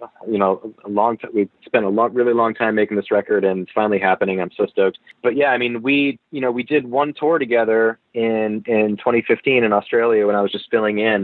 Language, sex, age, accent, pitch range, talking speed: English, male, 30-49, American, 95-110 Hz, 240 wpm